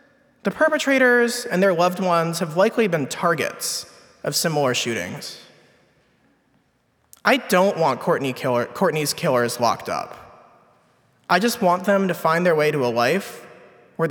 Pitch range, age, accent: 130-200 Hz, 20-39, American